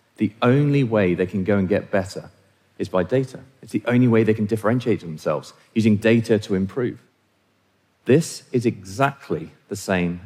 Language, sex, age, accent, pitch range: Korean, male, 40-59, British, 100-140 Hz